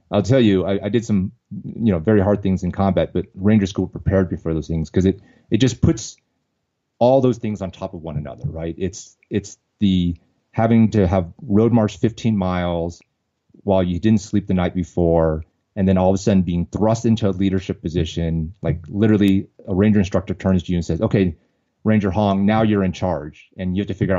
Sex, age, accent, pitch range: male, 30-49, American, 90-115 Hz